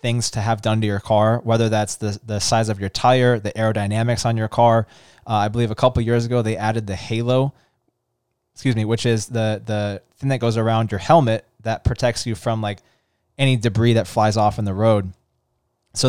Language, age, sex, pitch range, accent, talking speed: English, 20-39, male, 110-125 Hz, American, 215 wpm